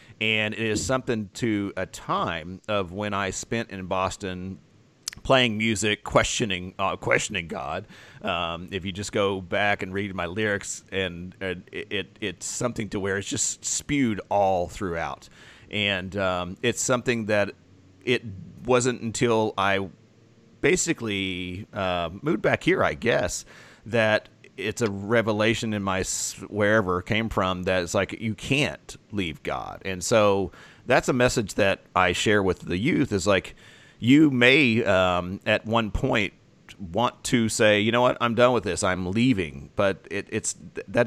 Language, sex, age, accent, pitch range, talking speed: English, male, 30-49, American, 95-115 Hz, 160 wpm